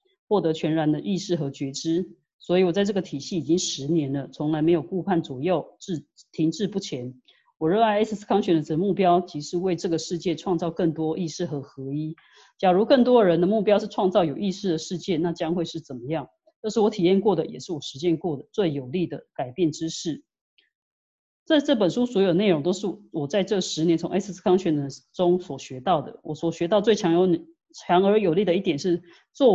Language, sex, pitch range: Chinese, female, 160-190 Hz